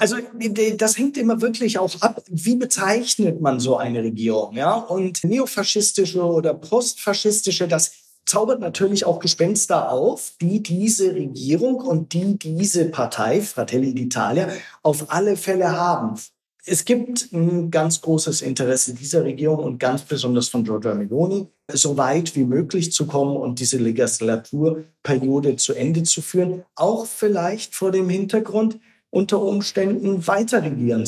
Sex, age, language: male, 50-69, German